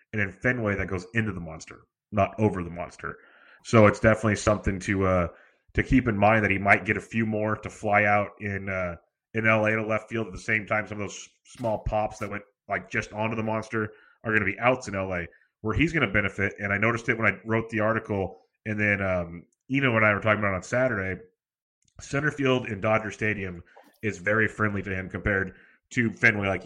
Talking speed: 230 wpm